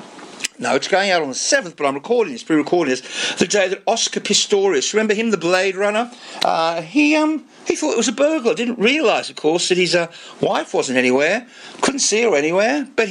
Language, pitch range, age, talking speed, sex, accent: English, 150-220 Hz, 50-69, 215 wpm, male, British